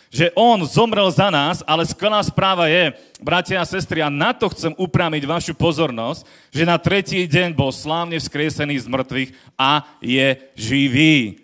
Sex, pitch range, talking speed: male, 150-185 Hz, 165 wpm